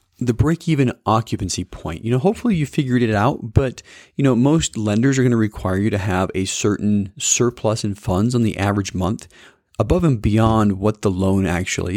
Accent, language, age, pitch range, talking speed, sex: American, English, 40-59, 105-135 Hz, 195 wpm, male